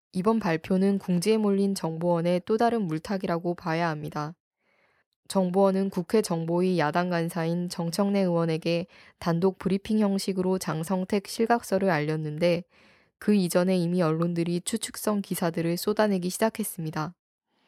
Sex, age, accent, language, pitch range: female, 20-39, native, Korean, 170-205 Hz